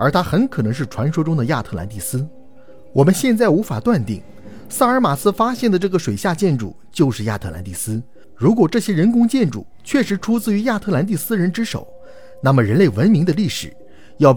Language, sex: Chinese, male